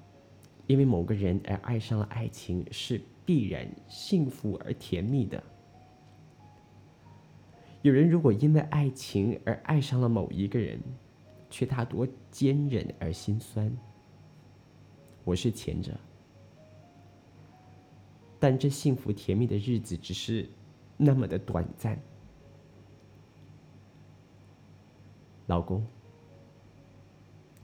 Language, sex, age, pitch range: Chinese, male, 20-39, 100-135 Hz